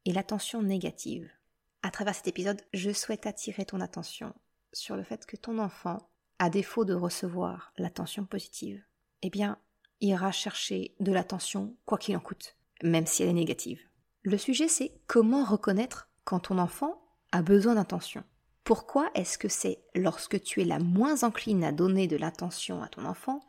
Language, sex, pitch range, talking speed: French, female, 180-225 Hz, 170 wpm